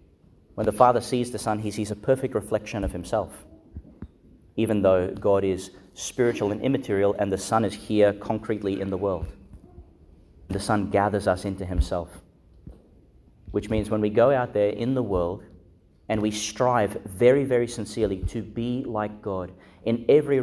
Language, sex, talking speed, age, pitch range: English, male, 165 wpm, 30-49, 90-110 Hz